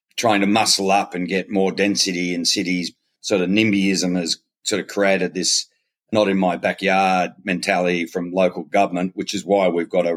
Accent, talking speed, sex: Australian, 170 wpm, male